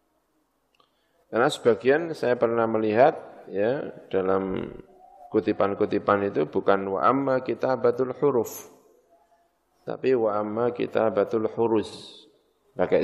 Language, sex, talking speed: Indonesian, male, 90 wpm